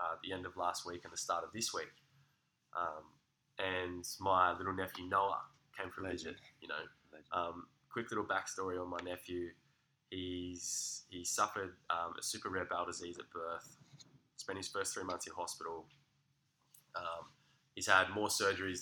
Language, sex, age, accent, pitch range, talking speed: English, male, 10-29, Australian, 90-110 Hz, 170 wpm